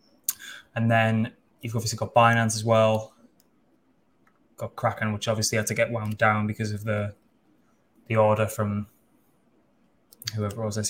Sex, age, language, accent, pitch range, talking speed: male, 10-29, English, British, 110-120 Hz, 145 wpm